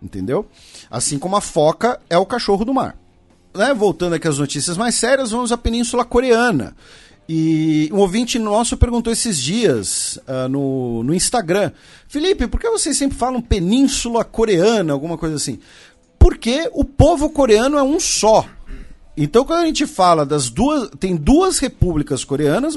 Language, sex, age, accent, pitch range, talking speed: Portuguese, male, 40-59, Brazilian, 160-265 Hz, 160 wpm